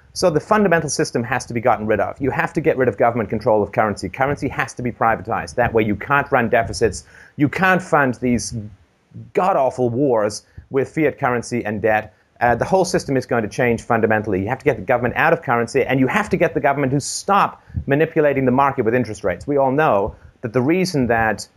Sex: male